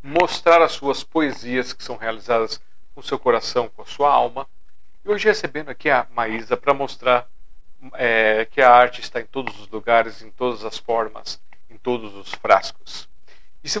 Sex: male